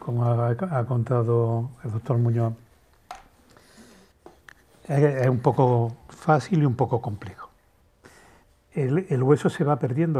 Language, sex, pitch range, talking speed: Spanish, male, 120-145 Hz, 130 wpm